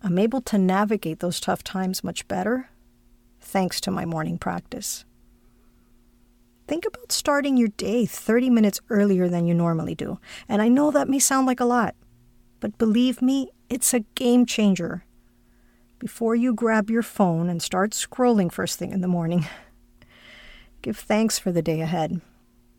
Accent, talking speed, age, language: American, 160 wpm, 50-69, English